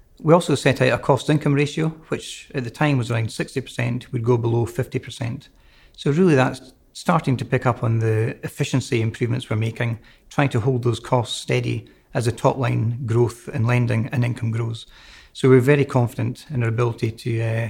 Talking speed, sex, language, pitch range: 185 wpm, male, English, 115-130 Hz